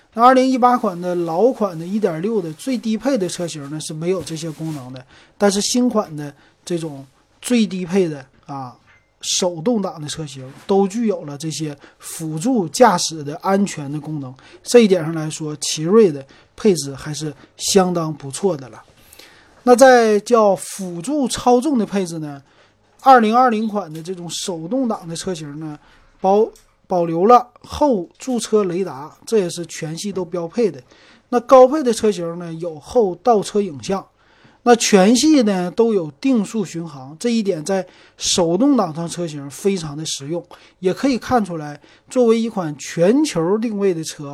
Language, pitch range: Chinese, 155-215 Hz